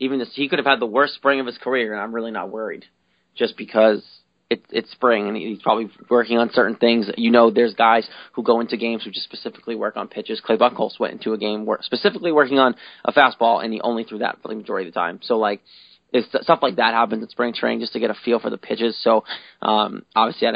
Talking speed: 260 wpm